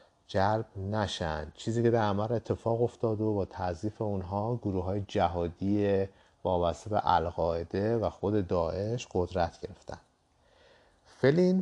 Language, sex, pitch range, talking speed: Persian, male, 90-120 Hz, 115 wpm